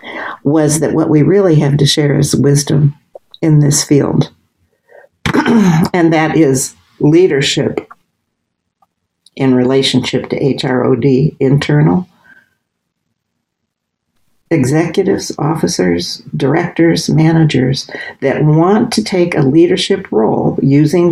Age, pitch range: 60-79, 145-180 Hz